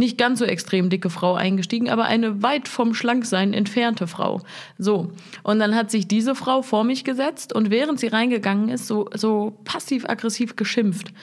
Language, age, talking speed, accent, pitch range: German, 30-49, 180 wpm, German, 200-235 Hz